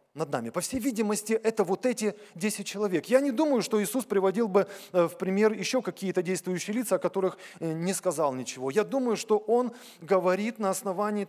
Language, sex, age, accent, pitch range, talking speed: Russian, male, 20-39, native, 180-220 Hz, 185 wpm